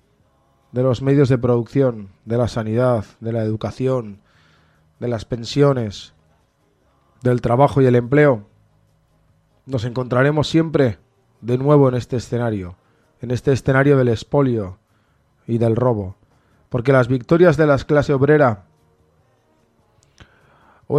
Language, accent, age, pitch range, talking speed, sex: Spanish, Spanish, 20-39, 105-135 Hz, 125 wpm, male